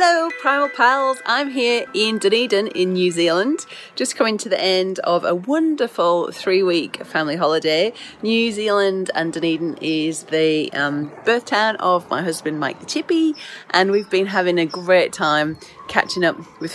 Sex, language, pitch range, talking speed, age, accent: female, English, 165-220 Hz, 170 wpm, 30-49, British